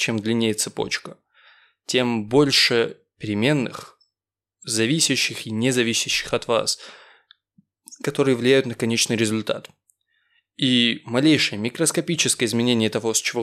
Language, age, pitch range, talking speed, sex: Russian, 20-39, 115-155 Hz, 105 wpm, male